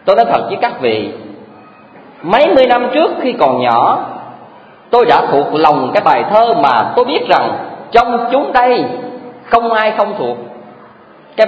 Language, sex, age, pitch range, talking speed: Vietnamese, male, 40-59, 195-265 Hz, 165 wpm